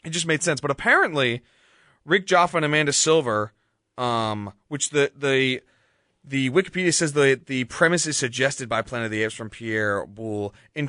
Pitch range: 115-155 Hz